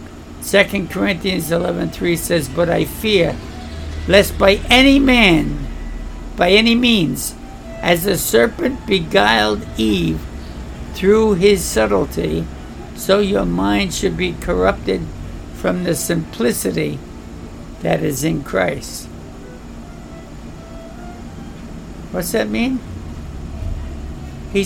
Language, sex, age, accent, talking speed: English, male, 60-79, American, 95 wpm